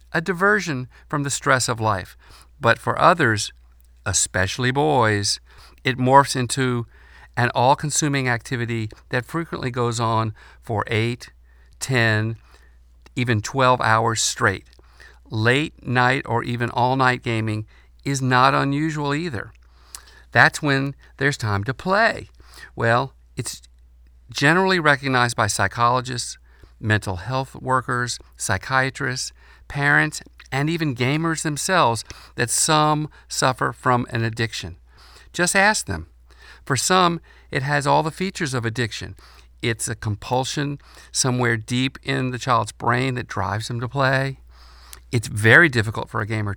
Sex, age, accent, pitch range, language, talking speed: male, 50-69, American, 105-135 Hz, English, 125 wpm